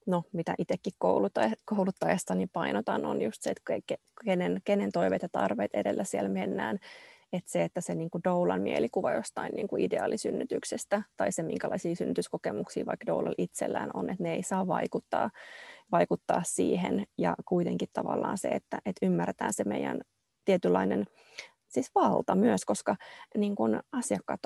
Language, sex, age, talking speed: Finnish, female, 20-39, 125 wpm